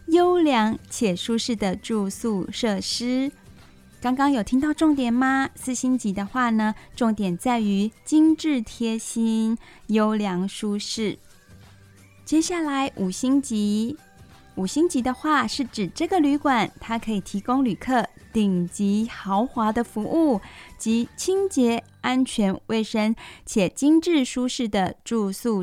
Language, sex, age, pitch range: Chinese, female, 20-39, 205-265 Hz